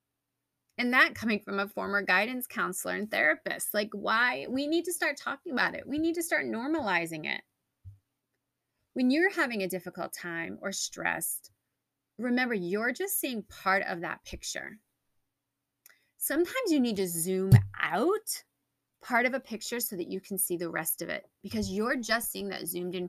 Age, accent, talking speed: 30-49, American, 175 wpm